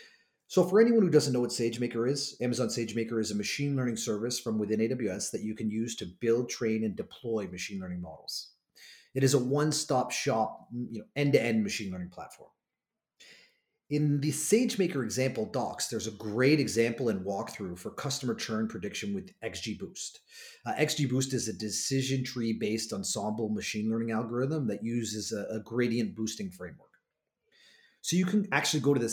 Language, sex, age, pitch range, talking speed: English, male, 30-49, 110-140 Hz, 170 wpm